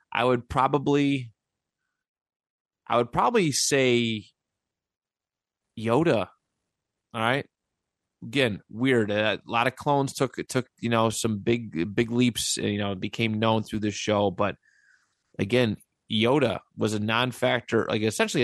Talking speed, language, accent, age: 125 wpm, English, American, 30-49